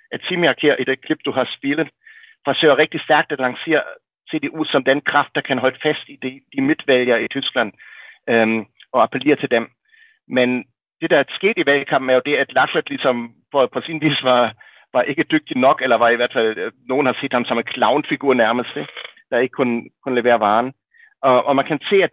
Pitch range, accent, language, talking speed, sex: 125-155 Hz, German, Danish, 215 wpm, male